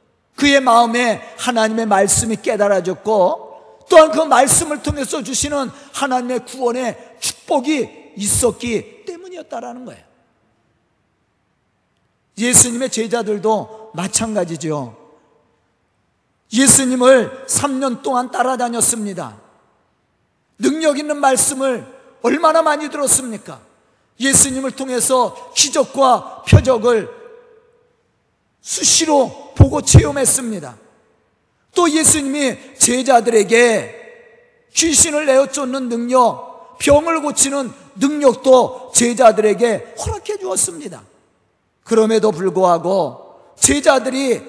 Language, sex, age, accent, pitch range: Korean, male, 40-59, native, 225-295 Hz